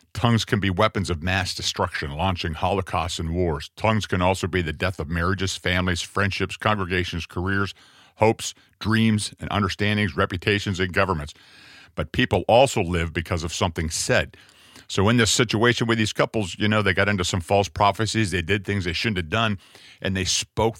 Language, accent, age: English, American, 50-69